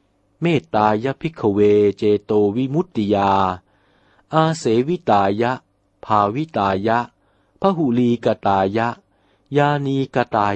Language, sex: Thai, male